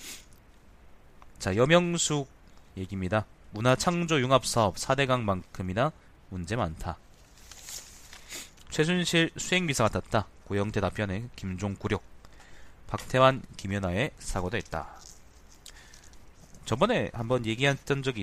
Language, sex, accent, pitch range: Korean, male, native, 90-125 Hz